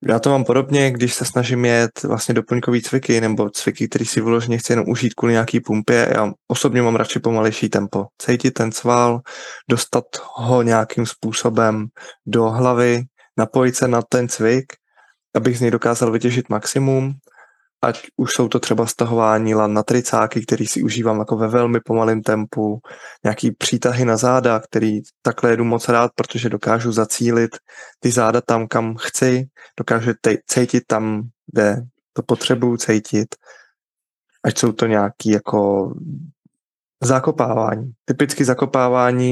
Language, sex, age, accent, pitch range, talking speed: Czech, male, 20-39, native, 115-125 Hz, 150 wpm